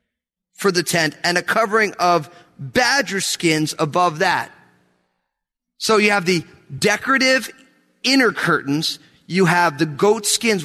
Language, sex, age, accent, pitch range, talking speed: English, male, 30-49, American, 150-200 Hz, 130 wpm